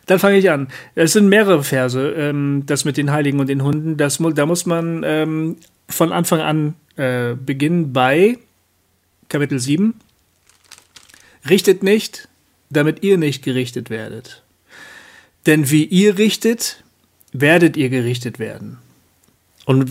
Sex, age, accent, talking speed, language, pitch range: male, 40-59, German, 125 wpm, German, 125-180 Hz